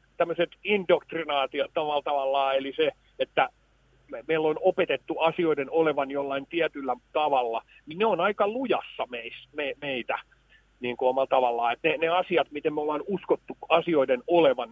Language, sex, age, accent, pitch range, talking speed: Finnish, male, 50-69, native, 135-185 Hz, 155 wpm